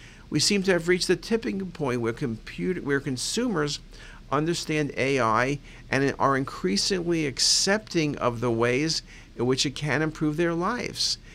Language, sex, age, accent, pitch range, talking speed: English, male, 50-69, American, 135-180 Hz, 150 wpm